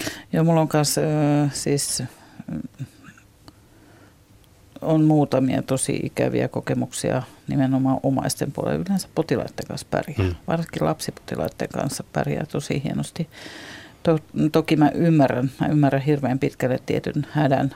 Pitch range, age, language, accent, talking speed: 135-150 Hz, 50-69, Finnish, native, 100 wpm